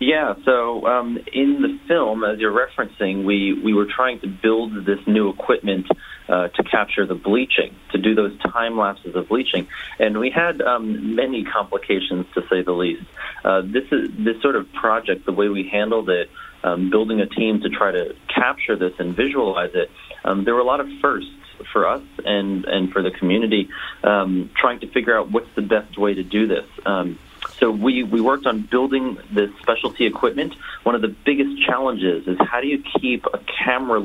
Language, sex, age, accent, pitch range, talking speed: English, male, 40-59, American, 95-120 Hz, 195 wpm